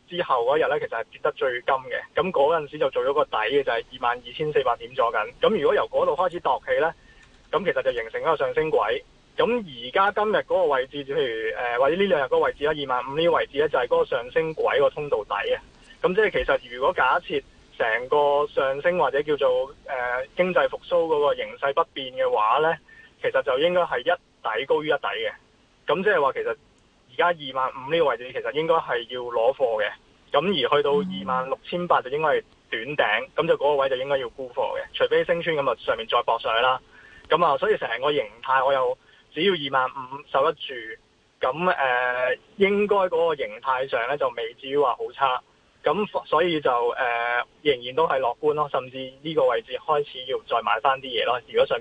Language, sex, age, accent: Chinese, male, 20-39, native